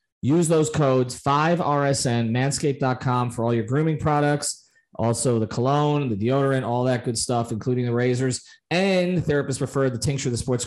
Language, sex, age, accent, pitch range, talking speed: English, male, 30-49, American, 115-140 Hz, 165 wpm